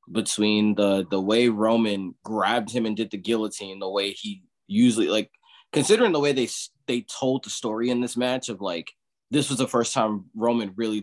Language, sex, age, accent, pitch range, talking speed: English, male, 20-39, American, 105-120 Hz, 195 wpm